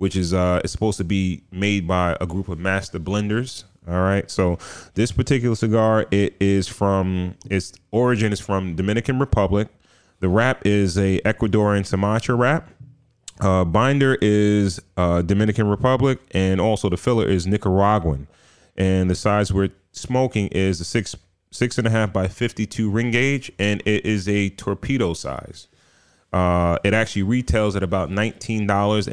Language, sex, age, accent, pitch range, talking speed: English, male, 30-49, American, 90-110 Hz, 155 wpm